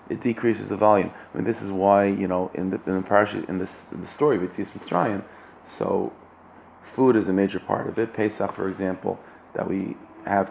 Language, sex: English, male